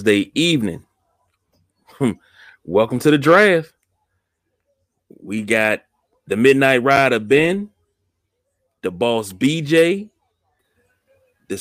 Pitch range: 105-140 Hz